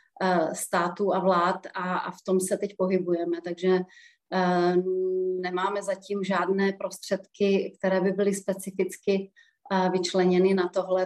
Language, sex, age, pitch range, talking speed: Czech, female, 30-49, 180-195 Hz, 130 wpm